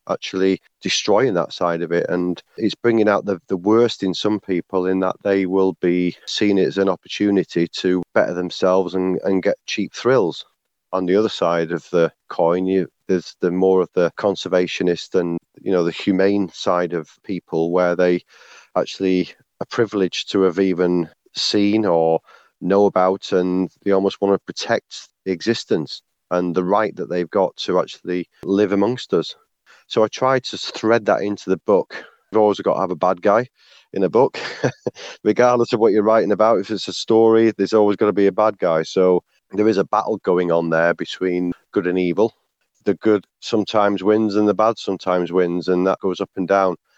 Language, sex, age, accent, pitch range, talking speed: English, male, 30-49, British, 90-105 Hz, 195 wpm